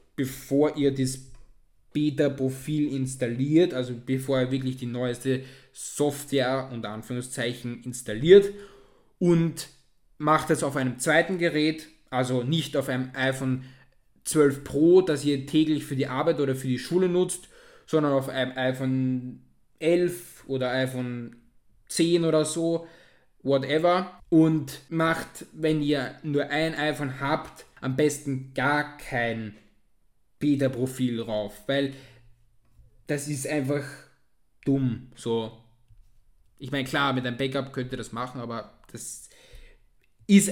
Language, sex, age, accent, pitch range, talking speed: German, male, 10-29, German, 130-155 Hz, 125 wpm